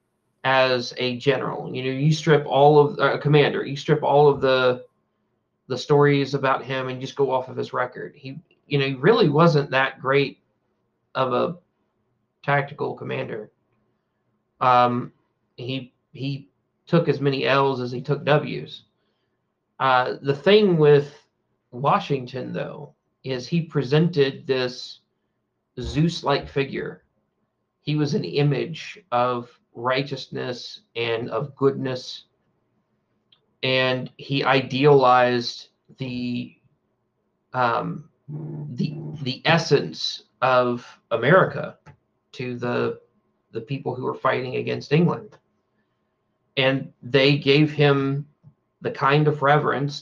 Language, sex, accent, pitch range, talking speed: English, male, American, 125-145 Hz, 120 wpm